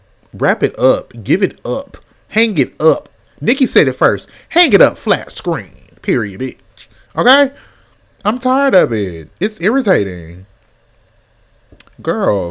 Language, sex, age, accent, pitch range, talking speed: English, male, 20-39, American, 115-165 Hz, 135 wpm